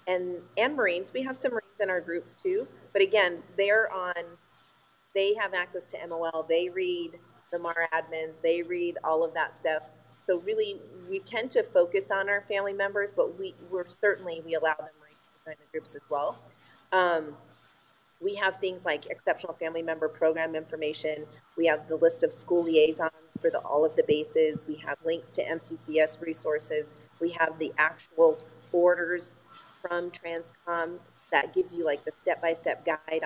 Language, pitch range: English, 160-195 Hz